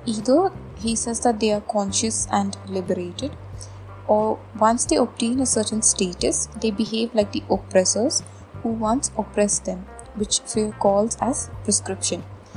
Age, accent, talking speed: 20-39, native, 140 wpm